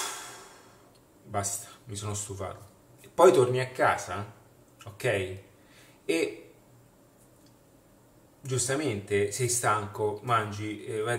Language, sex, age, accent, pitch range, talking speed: Italian, male, 30-49, native, 100-130 Hz, 85 wpm